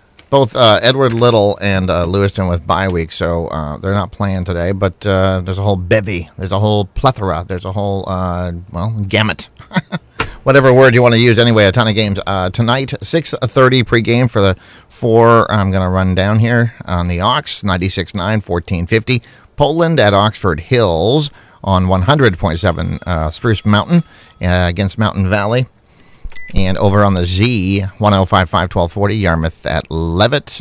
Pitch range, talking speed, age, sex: 90-115 Hz, 165 wpm, 30-49, male